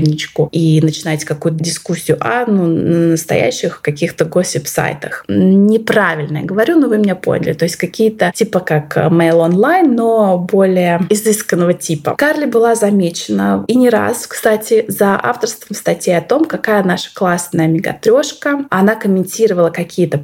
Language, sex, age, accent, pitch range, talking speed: Russian, female, 20-39, native, 165-220 Hz, 145 wpm